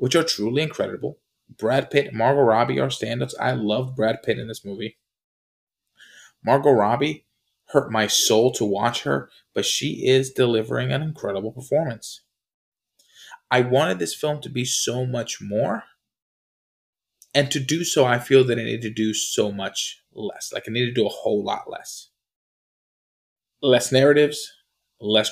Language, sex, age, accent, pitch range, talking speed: English, male, 20-39, American, 105-135 Hz, 160 wpm